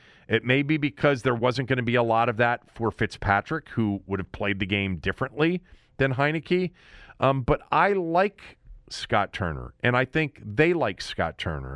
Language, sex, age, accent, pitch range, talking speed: English, male, 40-59, American, 105-140 Hz, 190 wpm